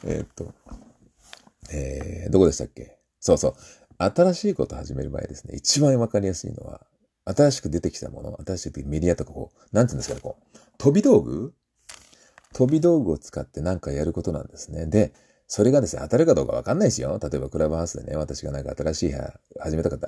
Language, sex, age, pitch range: Japanese, male, 40-59, 75-130 Hz